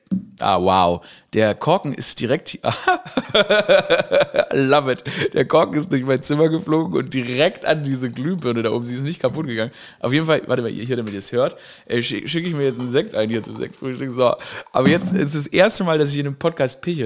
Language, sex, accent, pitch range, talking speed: German, male, German, 120-155 Hz, 220 wpm